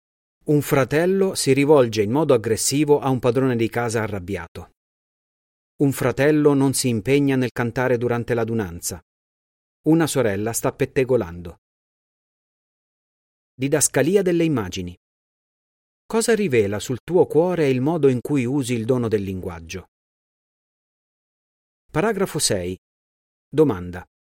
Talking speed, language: 115 wpm, Italian